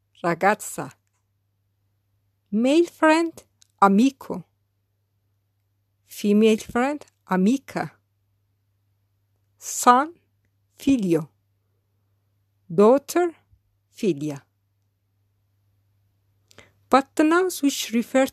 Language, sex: English, female